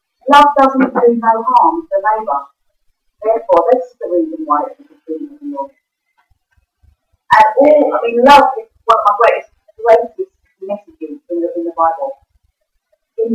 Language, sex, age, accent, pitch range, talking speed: English, female, 40-59, British, 190-300 Hz, 170 wpm